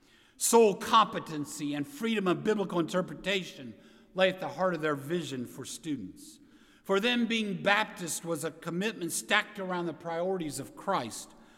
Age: 50-69